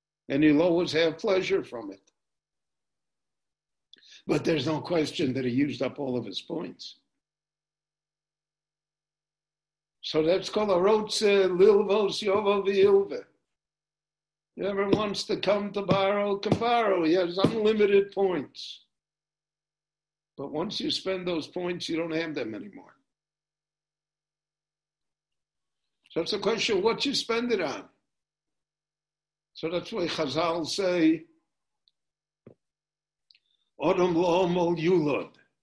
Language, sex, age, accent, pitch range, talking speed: English, male, 60-79, American, 155-195 Hz, 110 wpm